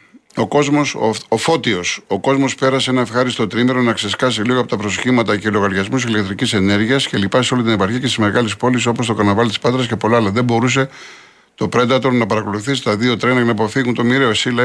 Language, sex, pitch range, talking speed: Greek, male, 115-135 Hz, 225 wpm